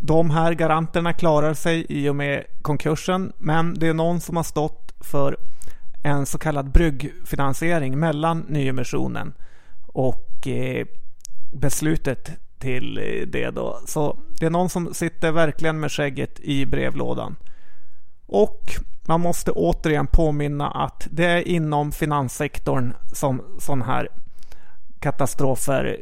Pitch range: 125-160 Hz